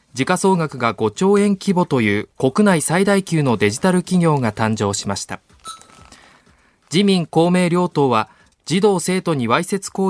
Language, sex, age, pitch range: Japanese, male, 20-39, 120-180 Hz